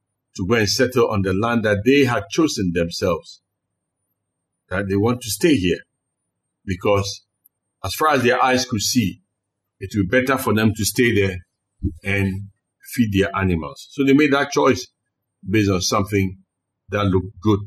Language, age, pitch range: English, 60-79, 100-125 Hz